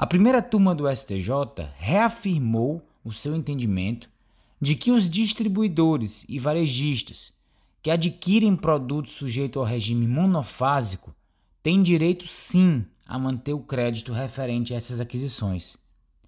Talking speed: 120 wpm